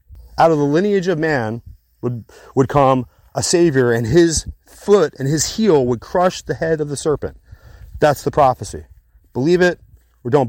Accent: American